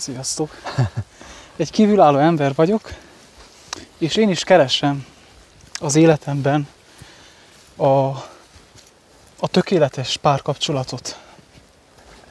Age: 20-39